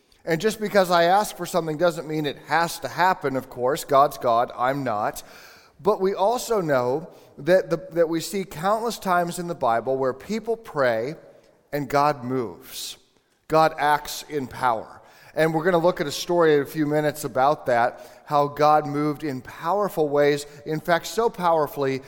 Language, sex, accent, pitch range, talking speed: English, male, American, 135-175 Hz, 175 wpm